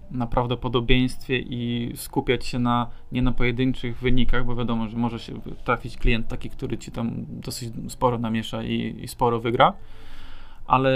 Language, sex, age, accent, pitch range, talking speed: Polish, male, 20-39, native, 115-130 Hz, 155 wpm